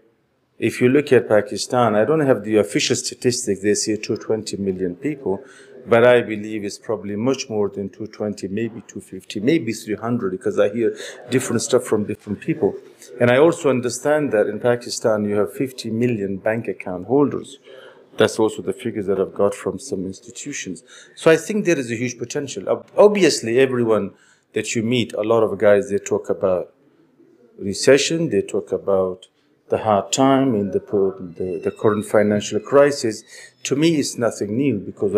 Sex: male